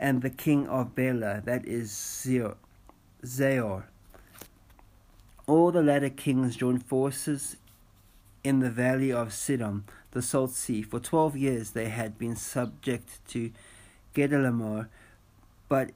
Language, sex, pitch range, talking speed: English, male, 105-135 Hz, 120 wpm